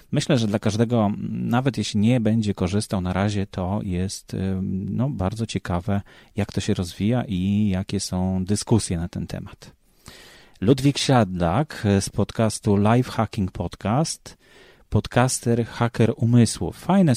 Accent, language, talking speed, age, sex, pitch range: native, Polish, 135 wpm, 30-49, male, 95-115 Hz